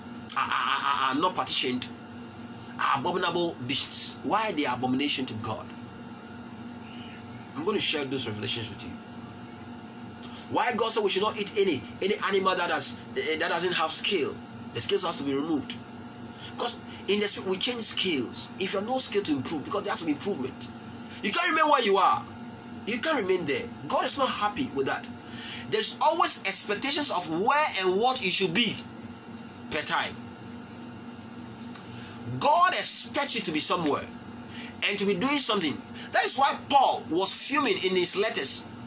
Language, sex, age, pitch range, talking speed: English, male, 30-49, 170-275 Hz, 175 wpm